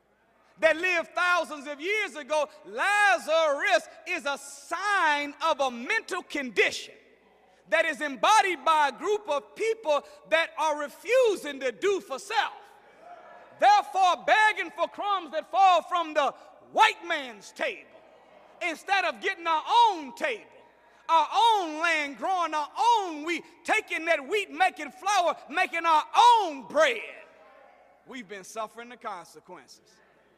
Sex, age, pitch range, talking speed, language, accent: male, 40-59, 280-370 Hz, 130 wpm, English, American